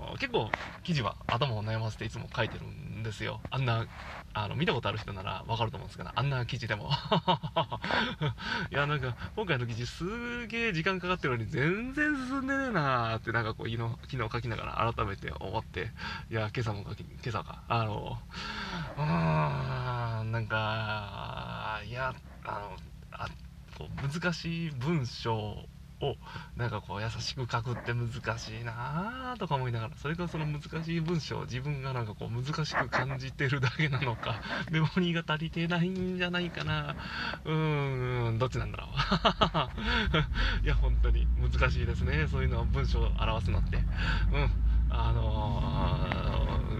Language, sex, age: Japanese, male, 20-39